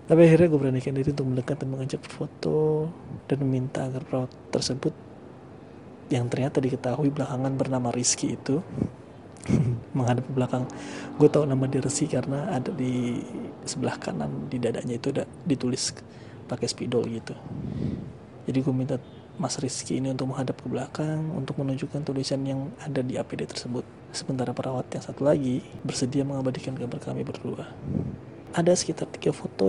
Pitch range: 125-145 Hz